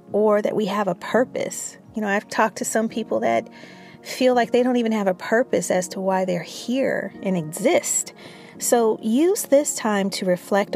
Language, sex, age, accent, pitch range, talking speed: English, female, 40-59, American, 180-225 Hz, 195 wpm